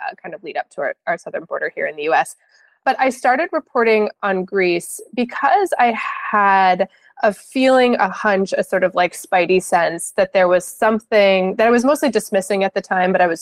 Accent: American